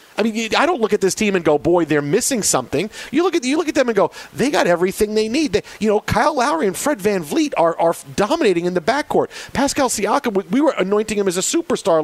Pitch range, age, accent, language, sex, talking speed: 155-210 Hz, 40-59, American, English, male, 260 wpm